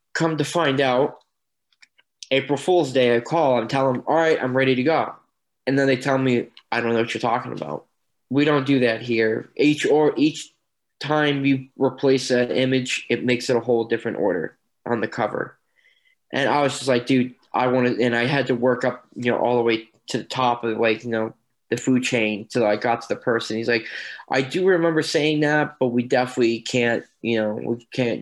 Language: English